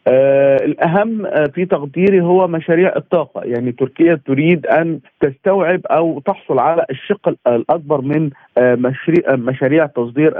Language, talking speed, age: Arabic, 115 wpm, 40-59